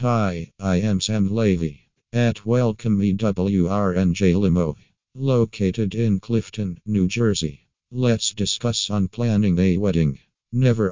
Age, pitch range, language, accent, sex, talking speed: 50-69, 95-110 Hz, English, American, male, 115 wpm